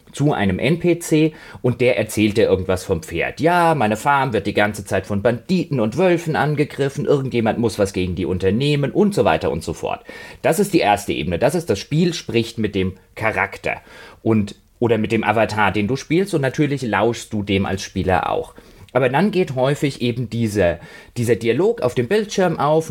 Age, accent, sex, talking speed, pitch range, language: 30-49, German, male, 195 wpm, 105-150 Hz, German